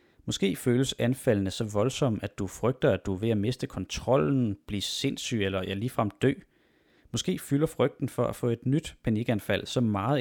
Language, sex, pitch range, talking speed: Danish, male, 100-130 Hz, 190 wpm